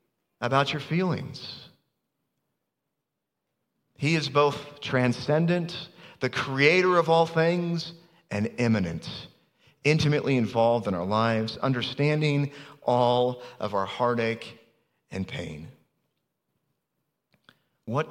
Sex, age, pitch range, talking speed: male, 40-59, 110-150 Hz, 90 wpm